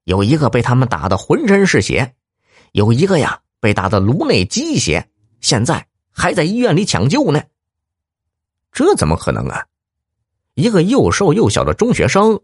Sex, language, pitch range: male, Chinese, 90-140 Hz